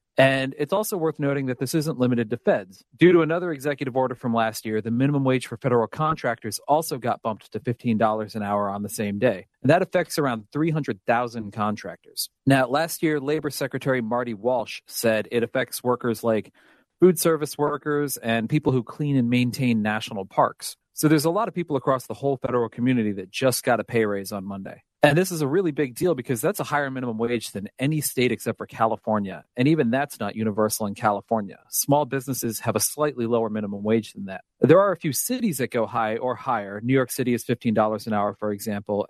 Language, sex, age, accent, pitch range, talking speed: English, male, 40-59, American, 110-145 Hz, 215 wpm